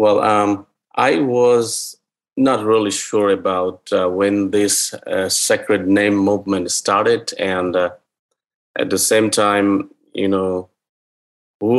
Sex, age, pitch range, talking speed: male, 30-49, 100-120 Hz, 125 wpm